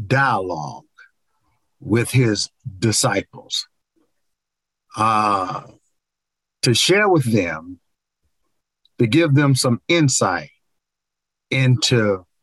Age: 50-69